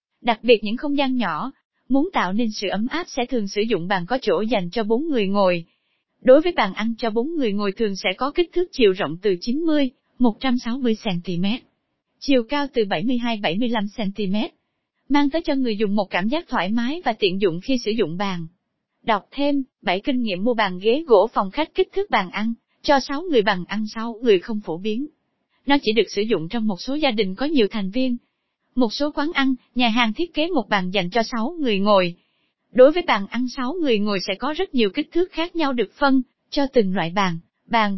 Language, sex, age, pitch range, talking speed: Vietnamese, female, 20-39, 210-275 Hz, 220 wpm